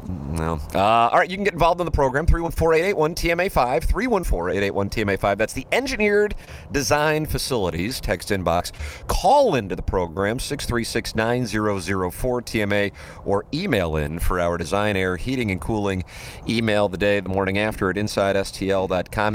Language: English